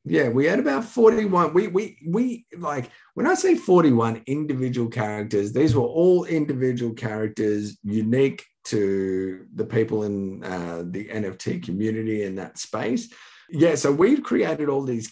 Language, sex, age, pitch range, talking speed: English, male, 50-69, 100-125 Hz, 150 wpm